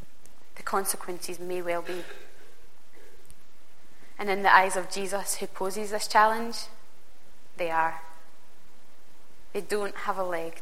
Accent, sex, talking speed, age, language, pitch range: British, female, 120 wpm, 20-39, English, 180-220 Hz